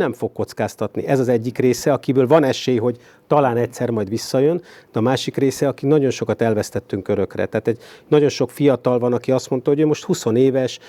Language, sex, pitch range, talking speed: Hungarian, male, 110-135 Hz, 210 wpm